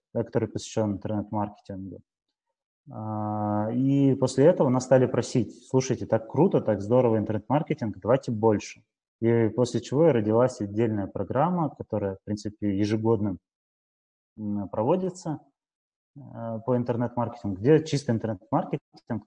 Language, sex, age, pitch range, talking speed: Russian, male, 20-39, 105-130 Hz, 115 wpm